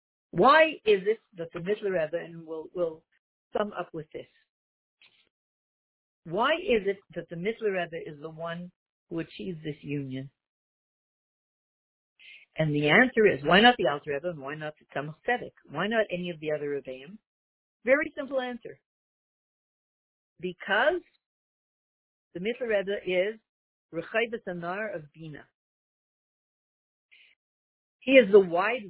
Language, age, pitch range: English, 50-69, 160-210 Hz